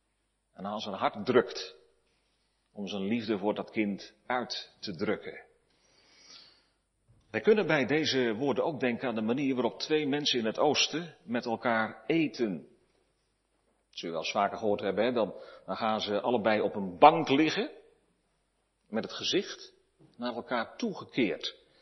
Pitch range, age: 105-155 Hz, 40-59